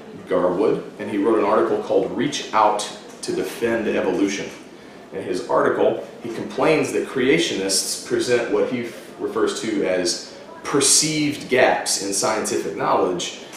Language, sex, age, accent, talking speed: English, male, 40-59, American, 135 wpm